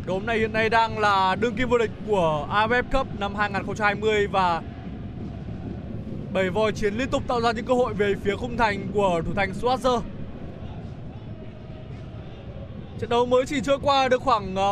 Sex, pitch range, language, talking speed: male, 205-295 Hz, Vietnamese, 170 wpm